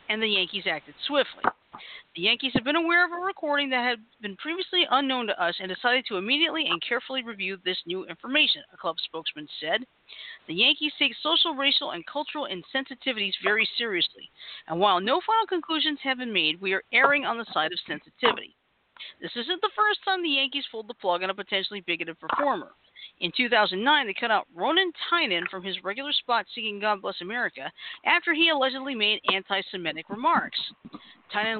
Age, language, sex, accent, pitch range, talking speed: 40-59, English, female, American, 190-285 Hz, 185 wpm